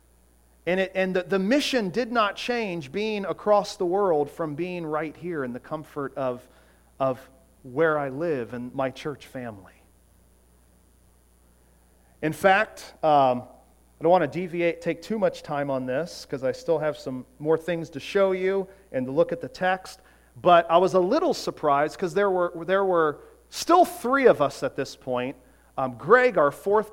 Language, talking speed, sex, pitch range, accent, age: English, 180 wpm, male, 125-195 Hz, American, 40-59